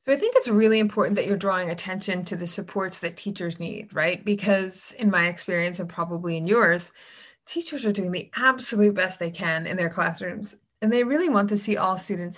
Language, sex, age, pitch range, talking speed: English, female, 20-39, 175-215 Hz, 215 wpm